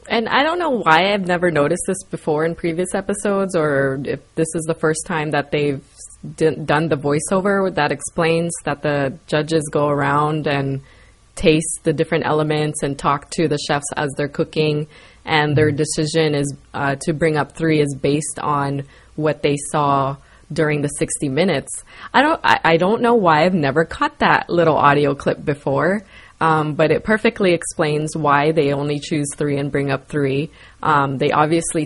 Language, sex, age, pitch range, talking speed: English, female, 20-39, 145-165 Hz, 185 wpm